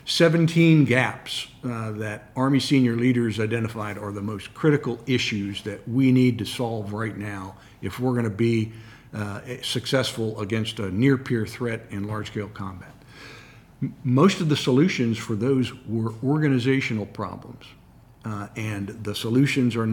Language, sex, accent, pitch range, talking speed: English, male, American, 105-130 Hz, 140 wpm